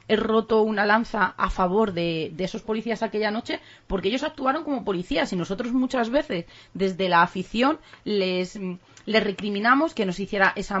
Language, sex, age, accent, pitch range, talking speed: Spanish, female, 30-49, Spanish, 185-220 Hz, 170 wpm